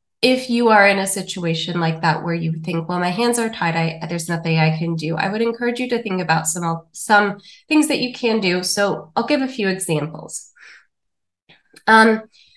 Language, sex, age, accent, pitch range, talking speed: English, female, 20-39, American, 170-225 Hz, 205 wpm